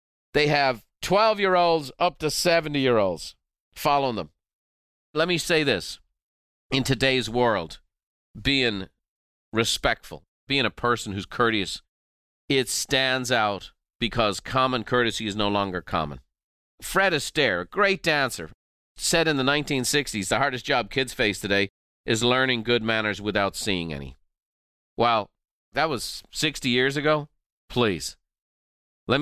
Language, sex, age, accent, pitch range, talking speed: English, male, 40-59, American, 100-135 Hz, 125 wpm